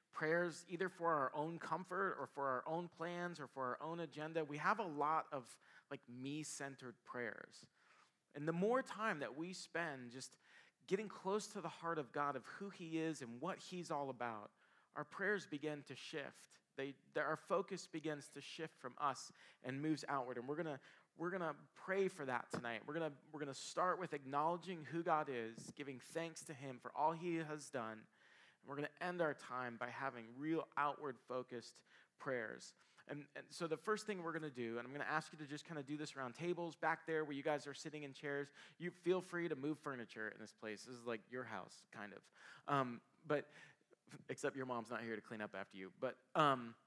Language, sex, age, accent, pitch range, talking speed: English, male, 40-59, American, 125-165 Hz, 215 wpm